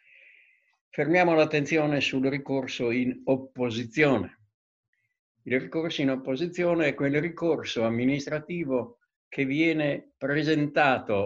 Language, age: Italian, 60-79